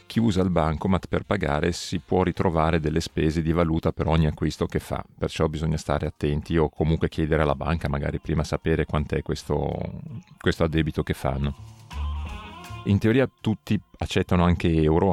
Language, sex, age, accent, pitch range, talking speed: Italian, male, 40-59, native, 80-95 Hz, 165 wpm